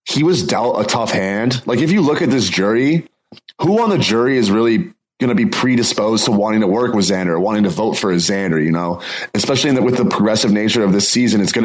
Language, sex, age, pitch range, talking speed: English, male, 20-39, 110-125 Hz, 250 wpm